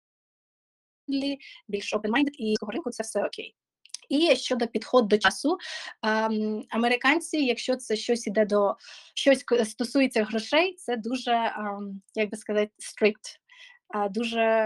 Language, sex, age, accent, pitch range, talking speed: Ukrainian, female, 20-39, native, 210-245 Hz, 135 wpm